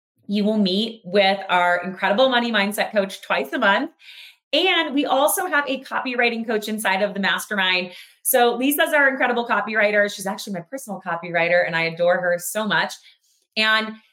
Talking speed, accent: 170 wpm, American